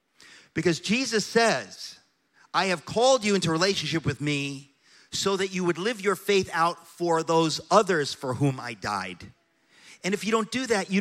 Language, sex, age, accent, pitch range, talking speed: English, male, 40-59, American, 130-185 Hz, 180 wpm